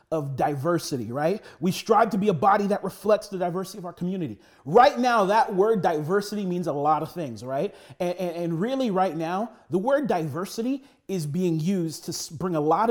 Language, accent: English, American